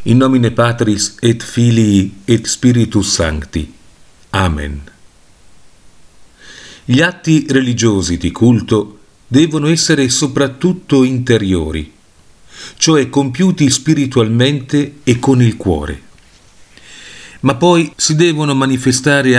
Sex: male